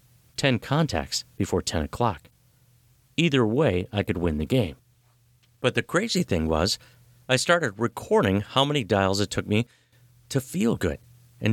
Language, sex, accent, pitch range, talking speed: English, male, American, 105-125 Hz, 155 wpm